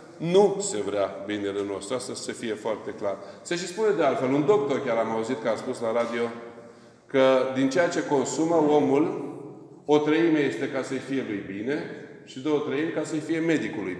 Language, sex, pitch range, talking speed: Romanian, male, 120-160 Hz, 195 wpm